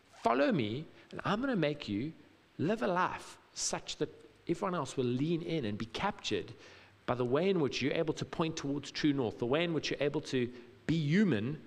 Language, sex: English, male